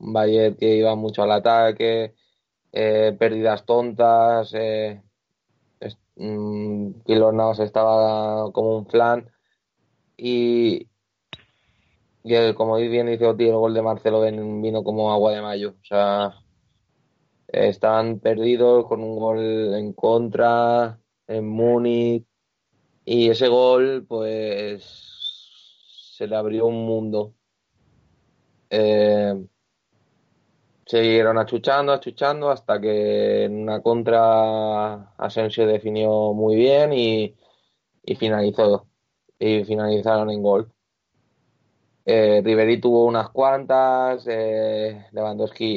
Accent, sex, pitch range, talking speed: Spanish, male, 105-115 Hz, 105 wpm